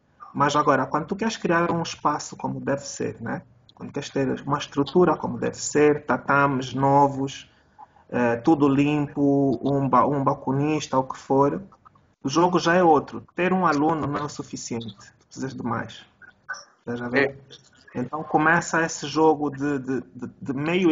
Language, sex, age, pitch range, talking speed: Portuguese, male, 20-39, 135-160 Hz, 160 wpm